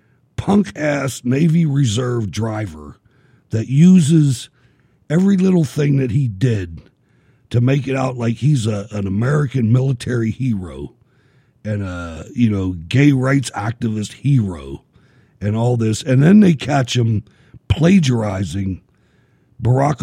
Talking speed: 115 wpm